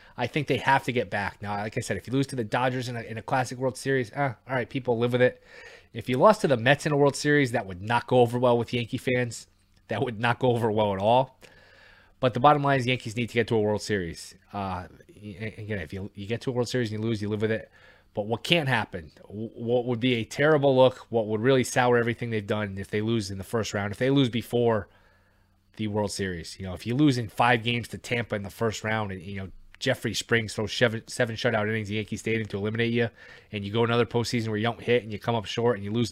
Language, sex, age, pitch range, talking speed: English, male, 20-39, 105-125 Hz, 275 wpm